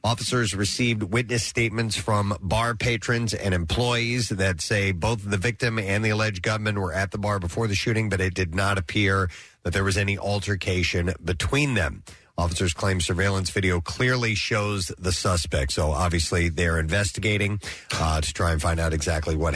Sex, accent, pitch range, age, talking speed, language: male, American, 90-110 Hz, 40-59, 175 wpm, English